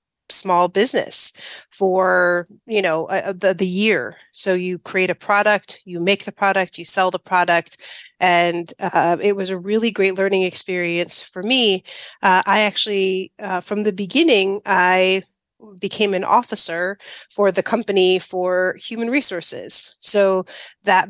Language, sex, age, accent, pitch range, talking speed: English, female, 30-49, American, 180-215 Hz, 150 wpm